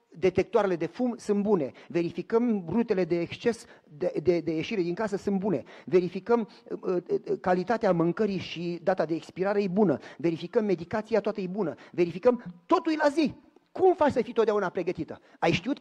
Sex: male